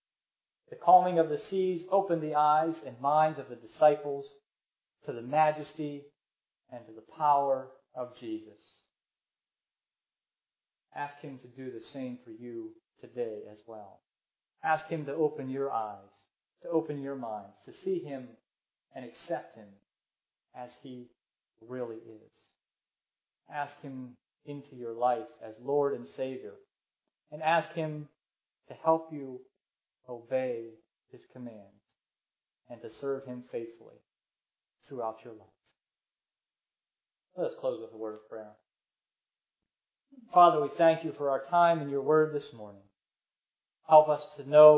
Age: 40-59